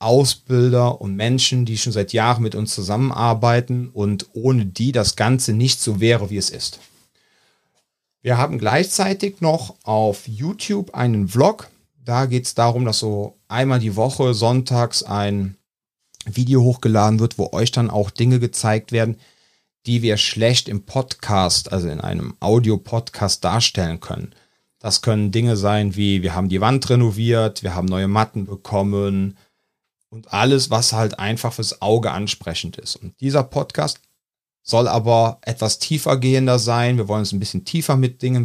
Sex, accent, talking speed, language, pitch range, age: male, German, 160 wpm, German, 100-125 Hz, 40-59